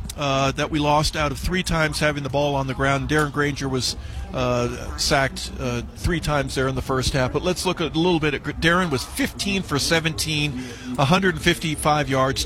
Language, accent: English, American